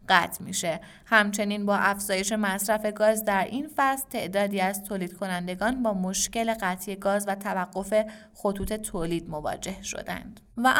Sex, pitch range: female, 190-230 Hz